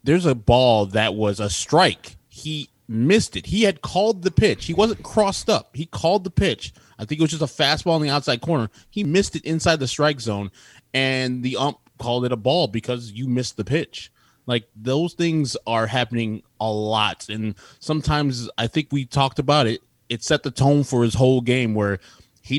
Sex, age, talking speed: male, 20-39, 205 wpm